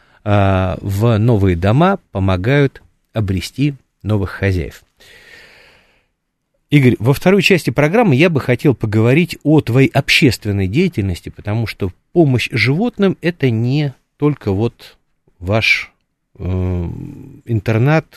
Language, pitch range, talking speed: Russian, 100-145 Hz, 100 wpm